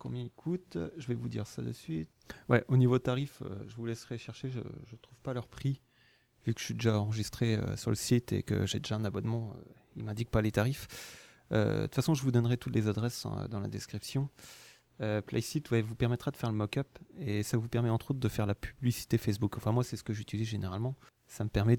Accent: French